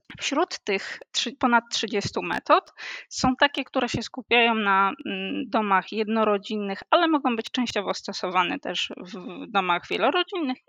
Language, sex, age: Polish, female, 20-39